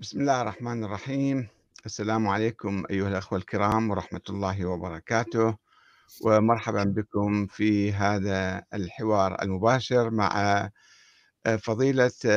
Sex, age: male, 50-69